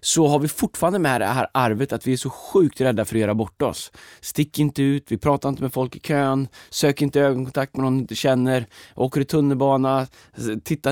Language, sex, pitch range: Swedish, male, 125-155 Hz